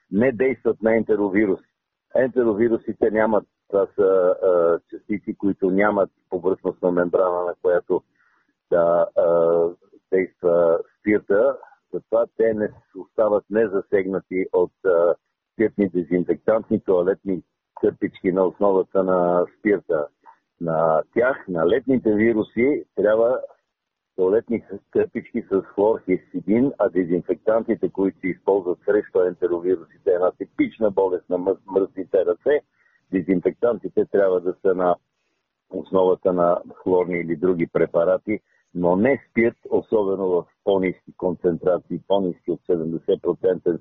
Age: 50-69